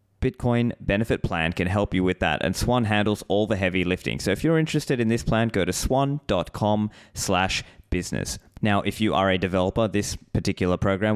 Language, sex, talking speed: English, male, 195 wpm